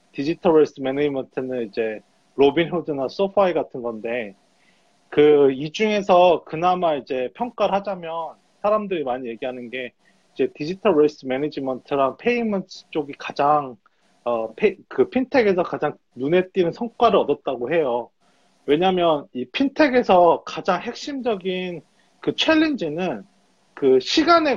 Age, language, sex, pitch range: 30-49, Korean, male, 145-230 Hz